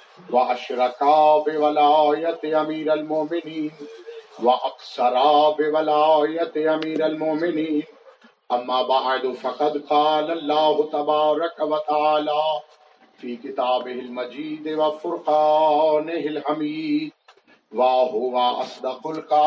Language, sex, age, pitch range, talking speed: Urdu, male, 50-69, 150-165 Hz, 45 wpm